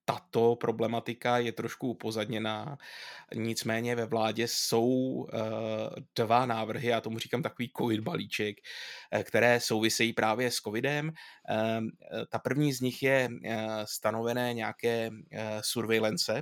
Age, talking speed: 20-39, 110 wpm